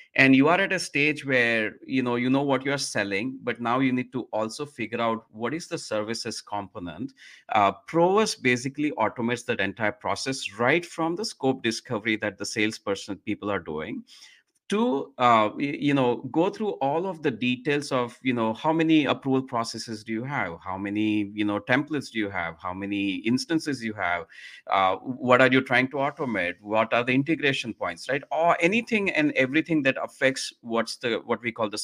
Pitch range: 110-155 Hz